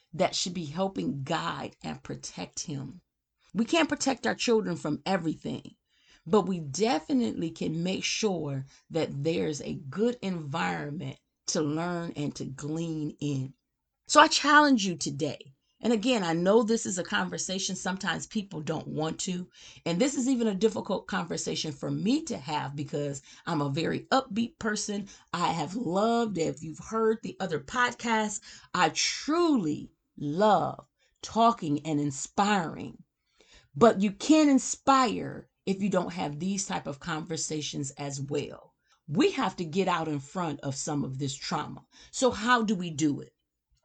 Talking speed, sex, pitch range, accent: 155 wpm, female, 150-225 Hz, American